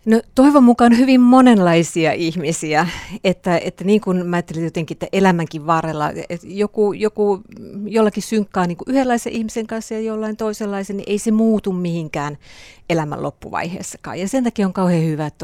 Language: Finnish